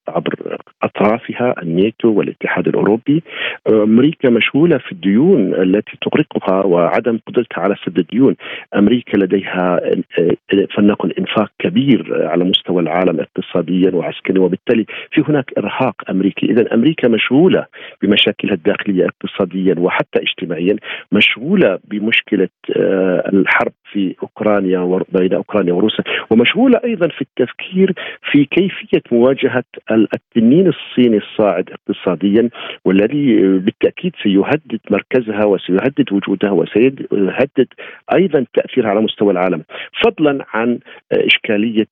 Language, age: Arabic, 50-69